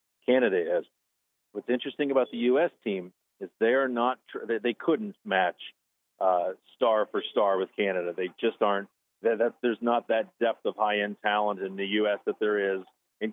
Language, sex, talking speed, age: English, male, 165 wpm, 40-59